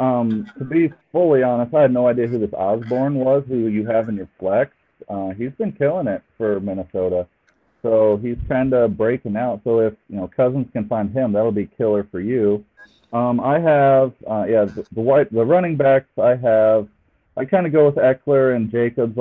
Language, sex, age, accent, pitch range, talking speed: English, male, 40-59, American, 105-125 Hz, 200 wpm